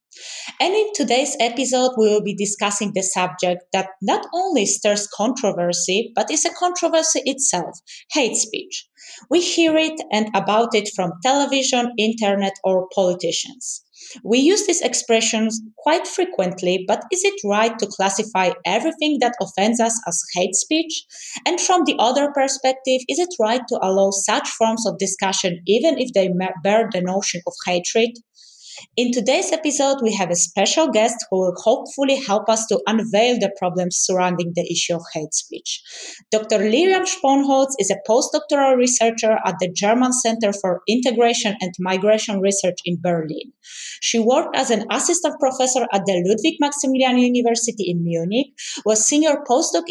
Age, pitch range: 20-39, 195-265 Hz